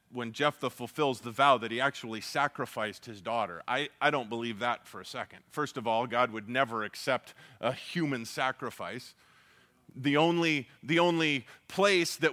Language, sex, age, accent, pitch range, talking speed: English, male, 30-49, American, 130-165 Hz, 170 wpm